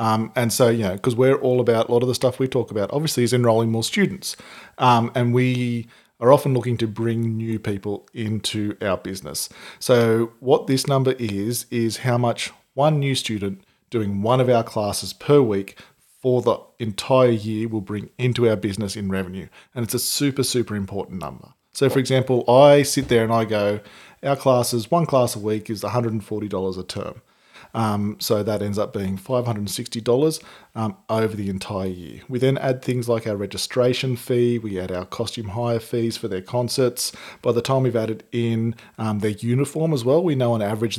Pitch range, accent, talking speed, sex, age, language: 110-125 Hz, Australian, 195 wpm, male, 40-59, English